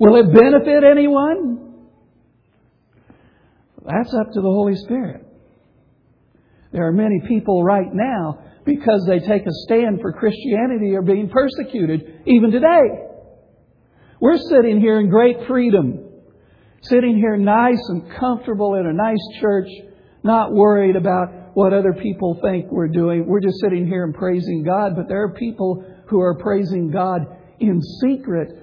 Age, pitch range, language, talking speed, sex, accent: 60-79, 155-220 Hz, English, 145 wpm, male, American